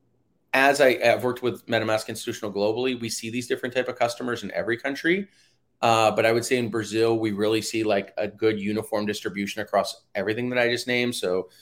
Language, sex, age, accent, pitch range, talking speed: English, male, 30-49, American, 105-125 Hz, 205 wpm